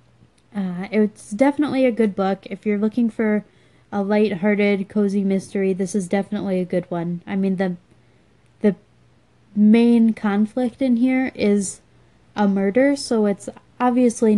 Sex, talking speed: female, 140 wpm